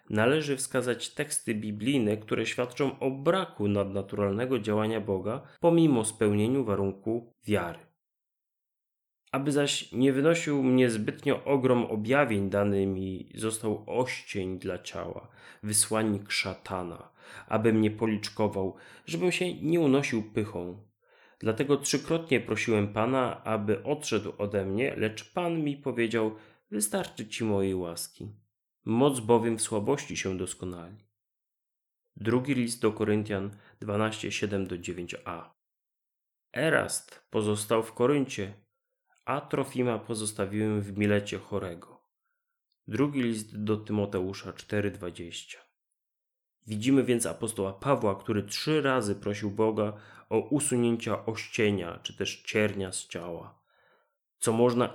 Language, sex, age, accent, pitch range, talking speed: Polish, male, 30-49, native, 100-130 Hz, 110 wpm